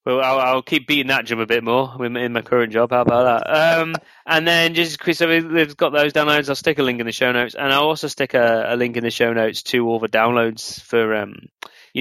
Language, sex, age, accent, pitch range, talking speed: English, male, 20-39, British, 110-130 Hz, 270 wpm